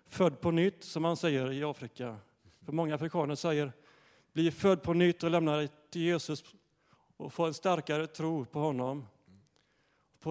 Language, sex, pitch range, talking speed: Swedish, male, 145-170 Hz, 175 wpm